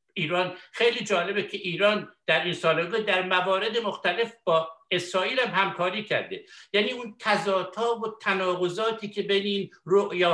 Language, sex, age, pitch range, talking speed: Persian, male, 60-79, 170-210 Hz, 140 wpm